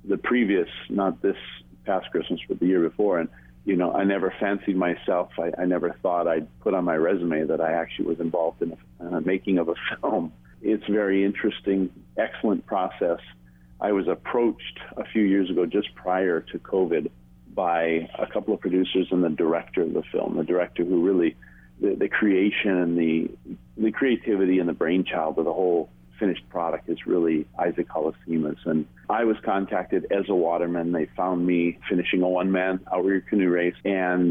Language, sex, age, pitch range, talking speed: English, male, 50-69, 80-95 Hz, 185 wpm